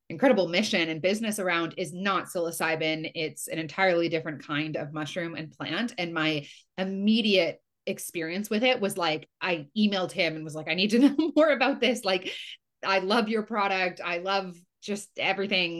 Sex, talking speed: female, 180 wpm